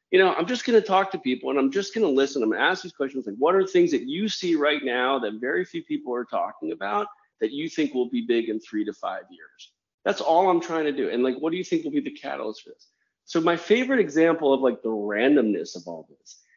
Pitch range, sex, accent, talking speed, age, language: 125-195 Hz, male, American, 280 wpm, 30-49, English